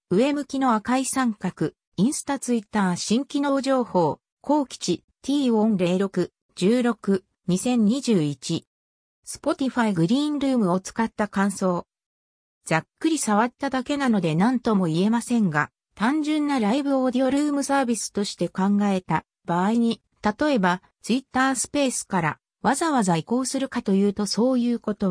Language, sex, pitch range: Japanese, female, 180-260 Hz